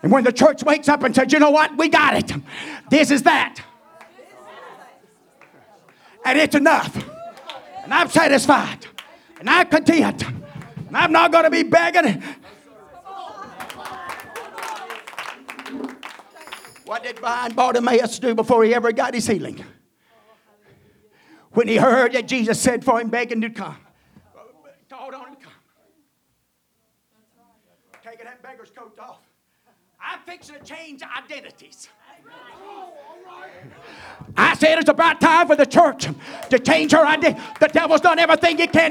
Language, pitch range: English, 260-345 Hz